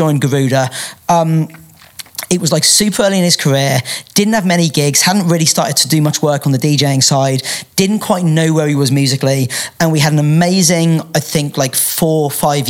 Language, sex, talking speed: English, male, 210 wpm